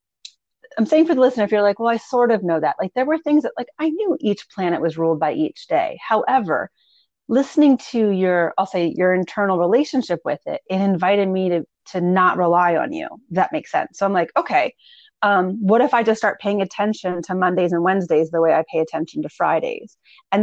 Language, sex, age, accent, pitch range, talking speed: English, female, 30-49, American, 175-245 Hz, 225 wpm